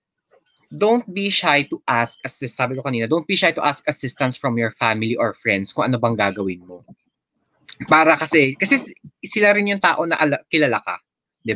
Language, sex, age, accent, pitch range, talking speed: Filipino, male, 20-39, native, 115-185 Hz, 190 wpm